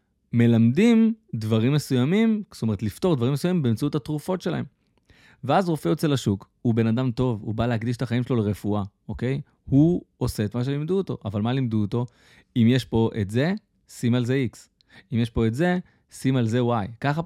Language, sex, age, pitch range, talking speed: Hebrew, male, 20-39, 105-140 Hz, 195 wpm